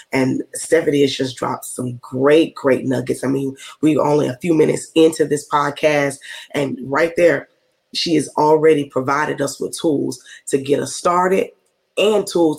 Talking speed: 165 wpm